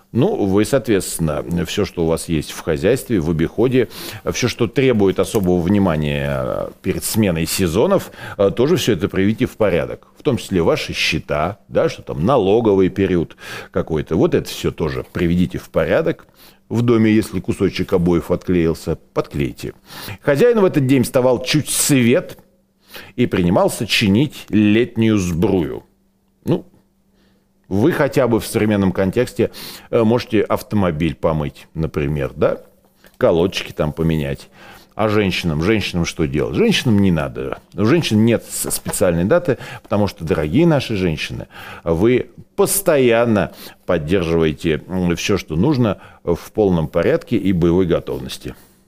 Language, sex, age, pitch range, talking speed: Russian, male, 40-59, 85-120 Hz, 130 wpm